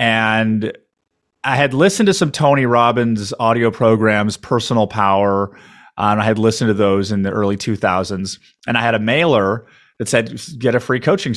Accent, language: American, English